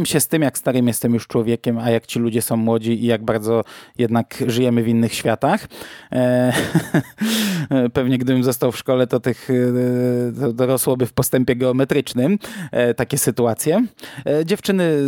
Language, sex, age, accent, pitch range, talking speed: Polish, male, 20-39, native, 115-135 Hz, 145 wpm